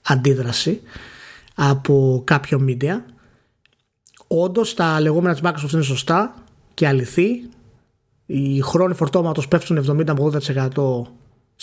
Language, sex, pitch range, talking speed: Greek, male, 135-180 Hz, 95 wpm